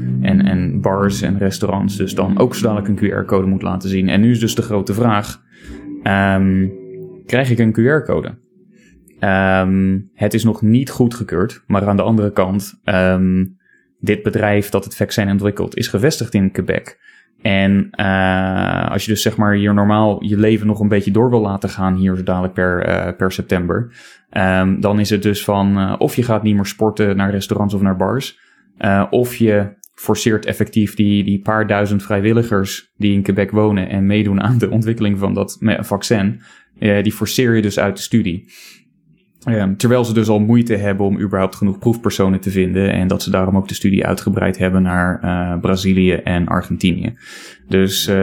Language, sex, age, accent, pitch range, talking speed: Dutch, male, 20-39, Dutch, 95-105 Hz, 185 wpm